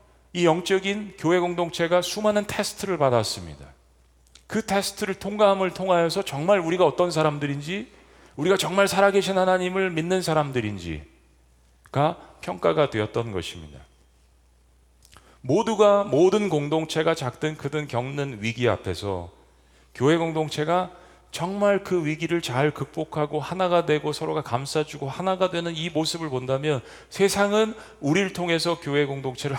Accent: native